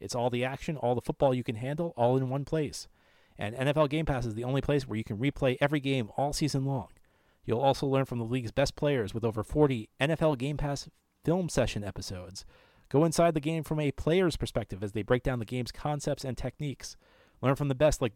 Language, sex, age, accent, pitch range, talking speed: English, male, 30-49, American, 115-145 Hz, 230 wpm